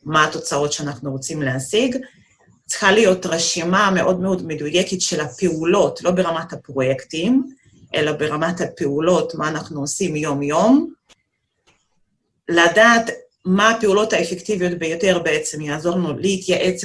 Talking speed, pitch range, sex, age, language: 110 wpm, 160-190 Hz, female, 30-49, Hebrew